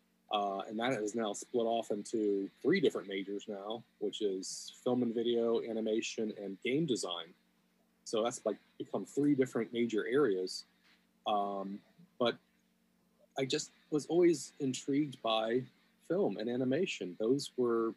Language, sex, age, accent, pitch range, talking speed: English, male, 30-49, American, 110-130 Hz, 140 wpm